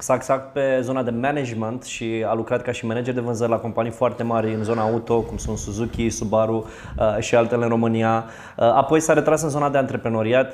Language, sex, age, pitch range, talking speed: Romanian, male, 20-39, 115-135 Hz, 220 wpm